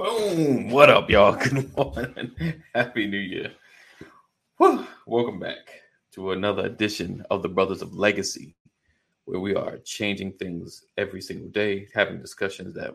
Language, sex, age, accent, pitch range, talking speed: English, male, 30-49, American, 95-120 Hz, 140 wpm